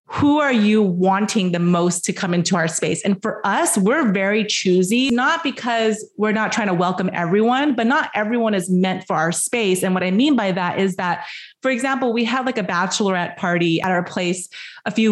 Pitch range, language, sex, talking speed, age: 180-220 Hz, English, female, 215 wpm, 30-49